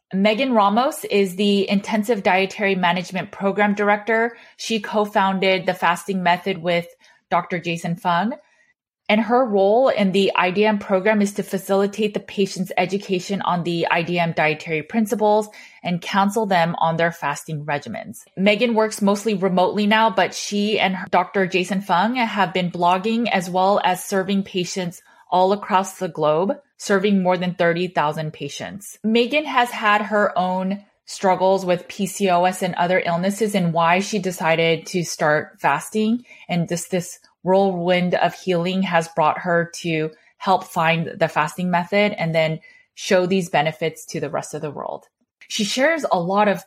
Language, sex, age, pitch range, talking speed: English, female, 20-39, 175-210 Hz, 155 wpm